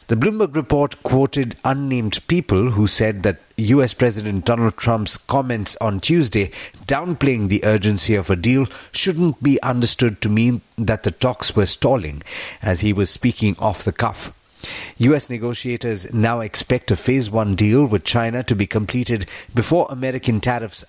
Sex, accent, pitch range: male, Indian, 100-130 Hz